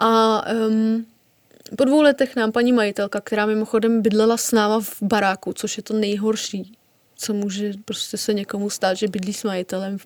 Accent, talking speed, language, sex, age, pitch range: native, 180 wpm, Czech, female, 20-39, 220-260 Hz